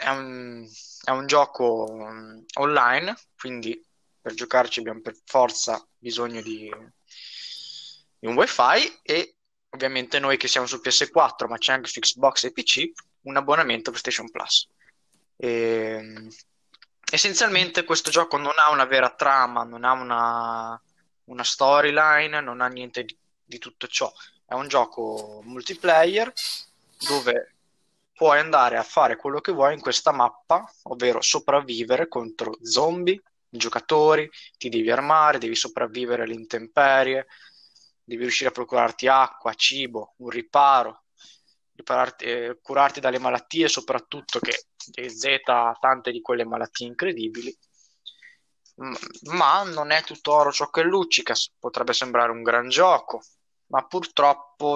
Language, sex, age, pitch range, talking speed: Italian, male, 20-39, 120-150 Hz, 130 wpm